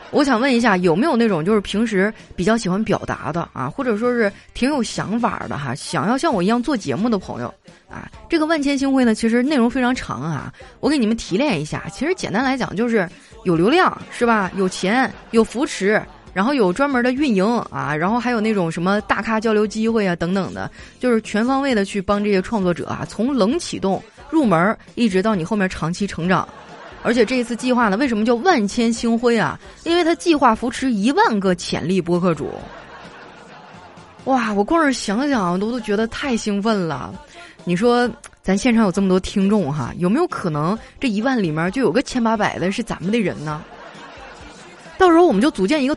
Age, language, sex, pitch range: 20-39, Chinese, female, 195-255 Hz